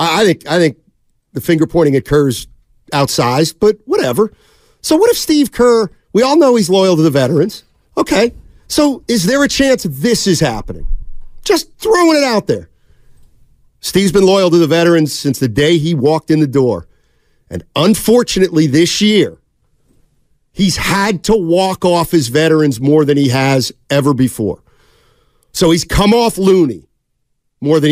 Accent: American